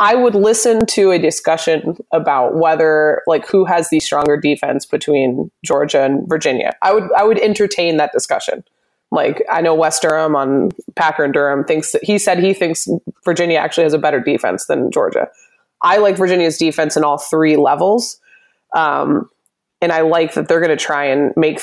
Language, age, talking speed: English, 20-39, 185 wpm